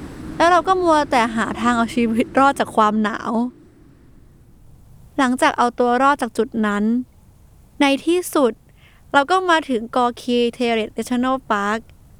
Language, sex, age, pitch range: Thai, female, 20-39, 230-300 Hz